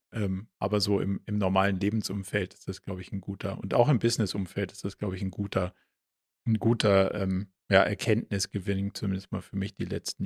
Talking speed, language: 185 wpm, German